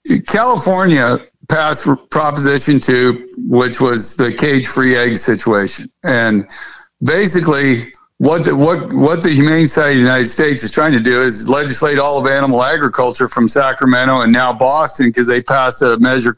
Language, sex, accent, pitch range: English, male, American, 125-160 Hz